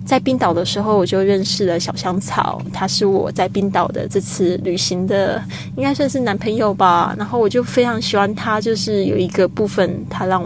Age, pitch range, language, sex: 20-39, 175-205 Hz, Chinese, female